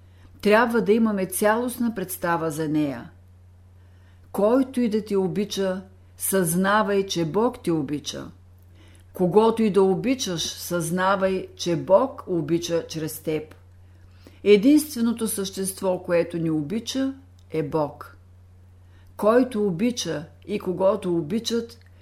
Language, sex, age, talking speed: Bulgarian, female, 50-69, 105 wpm